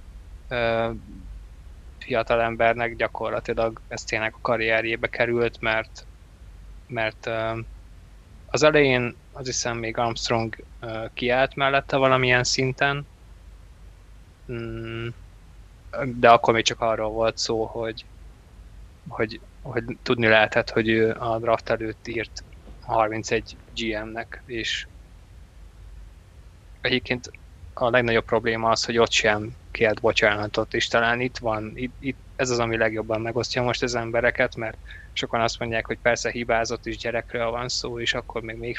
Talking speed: 120 wpm